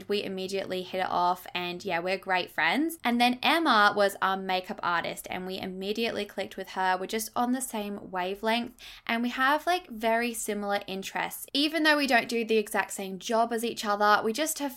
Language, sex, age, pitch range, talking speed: English, female, 10-29, 190-235 Hz, 205 wpm